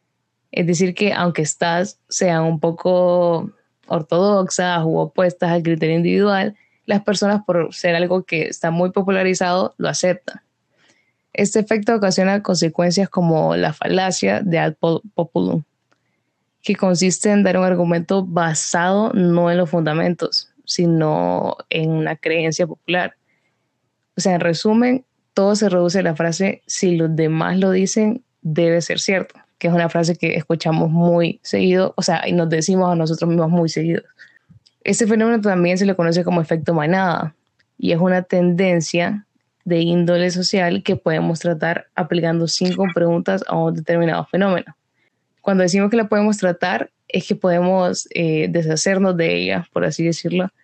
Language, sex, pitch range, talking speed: Spanish, female, 165-195 Hz, 155 wpm